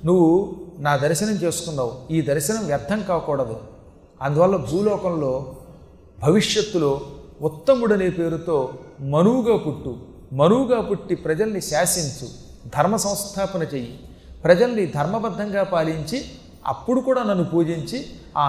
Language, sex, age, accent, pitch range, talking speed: Telugu, male, 40-59, native, 145-200 Hz, 95 wpm